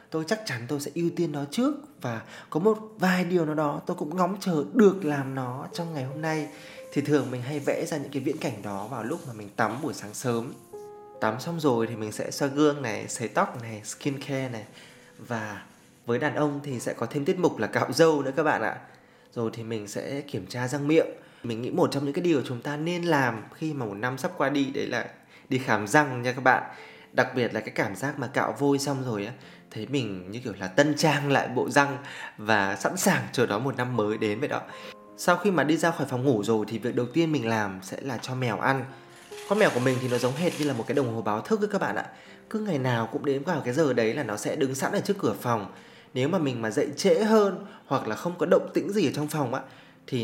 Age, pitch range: 20-39, 120-160 Hz